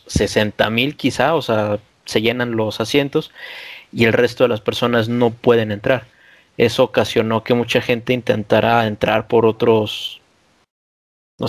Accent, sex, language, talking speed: Mexican, male, Spanish, 140 wpm